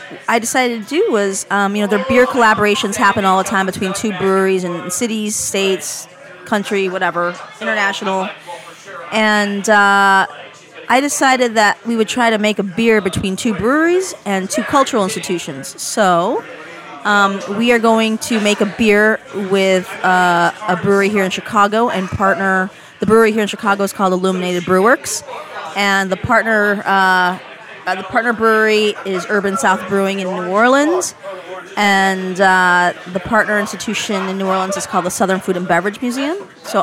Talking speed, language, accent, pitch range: 165 wpm, English, American, 190-220 Hz